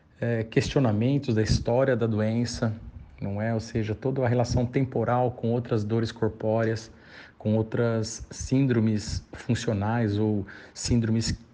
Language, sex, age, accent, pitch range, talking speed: Portuguese, male, 40-59, Brazilian, 110-125 Hz, 120 wpm